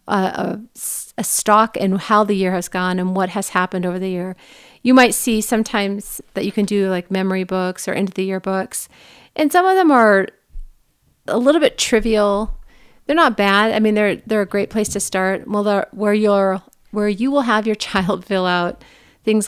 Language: English